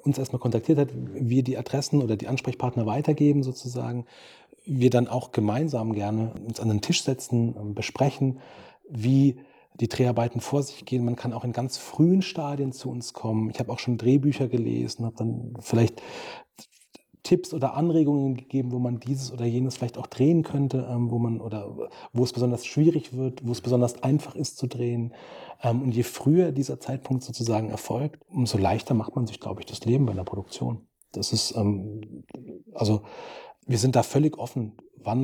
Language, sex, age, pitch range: German, male, 40-59, 115-135 Hz